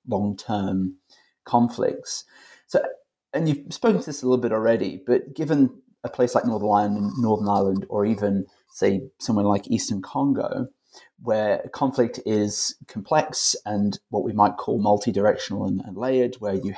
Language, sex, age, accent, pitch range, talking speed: English, male, 30-49, British, 100-140 Hz, 155 wpm